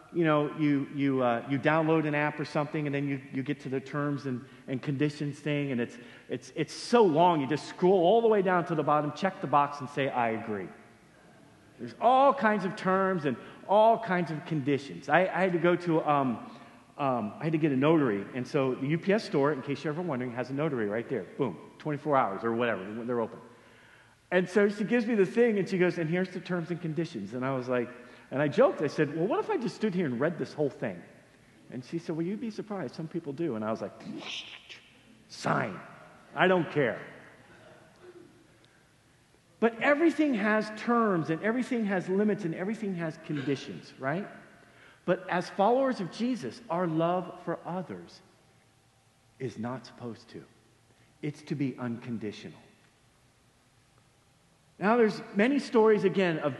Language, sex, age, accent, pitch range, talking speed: English, male, 40-59, American, 135-190 Hz, 195 wpm